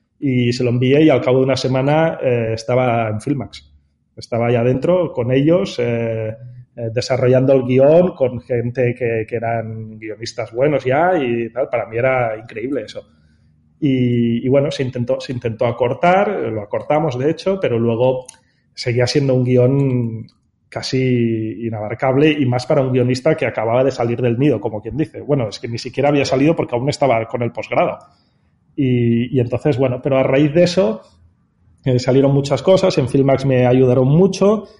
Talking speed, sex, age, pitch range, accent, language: 180 wpm, male, 30-49, 120-140 Hz, Spanish, Spanish